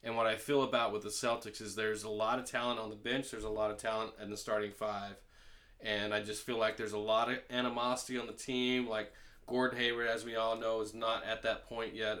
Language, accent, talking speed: English, American, 255 wpm